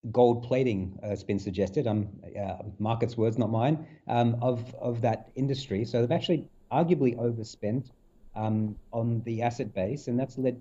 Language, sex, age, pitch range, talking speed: English, male, 40-59, 110-140 Hz, 175 wpm